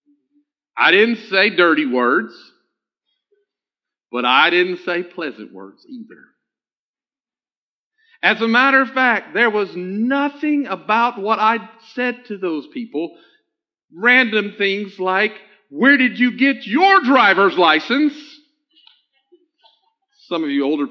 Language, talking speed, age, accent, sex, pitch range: English, 120 wpm, 50-69, American, male, 175-285 Hz